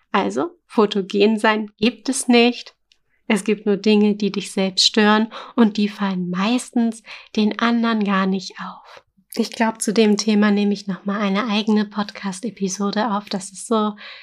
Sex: female